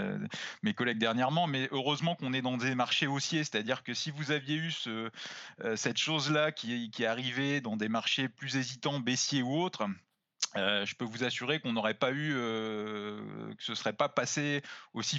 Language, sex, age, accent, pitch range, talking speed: French, male, 20-39, French, 115-140 Hz, 185 wpm